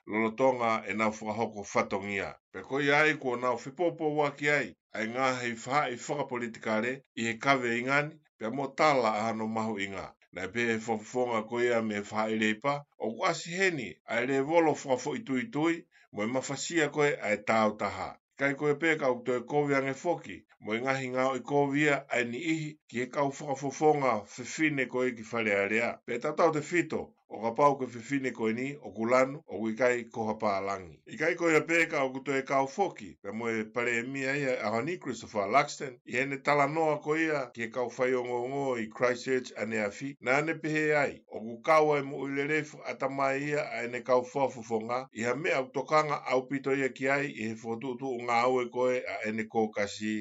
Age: 60-79